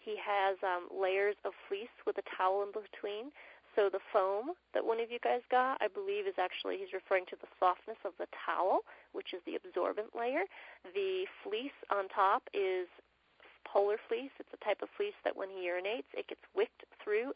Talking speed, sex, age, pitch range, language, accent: 195 wpm, female, 30-49, 190-285 Hz, English, American